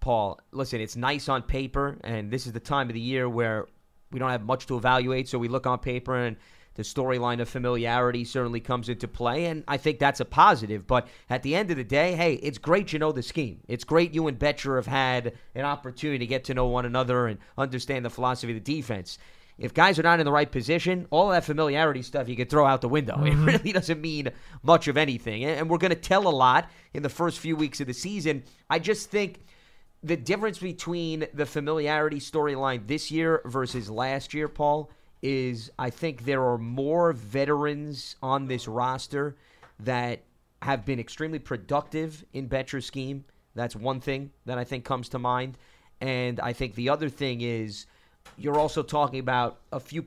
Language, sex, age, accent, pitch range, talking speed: English, male, 30-49, American, 125-155 Hz, 205 wpm